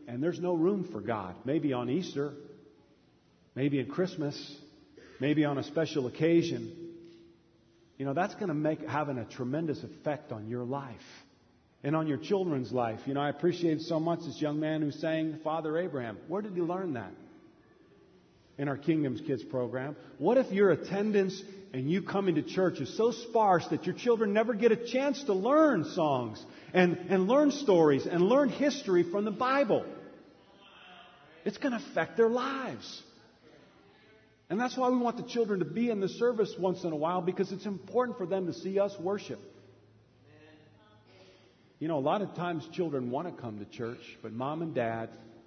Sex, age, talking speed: male, 40-59, 180 wpm